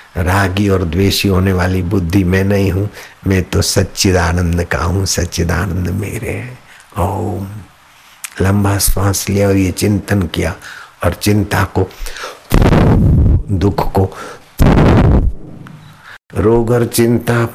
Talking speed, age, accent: 110 wpm, 60-79, native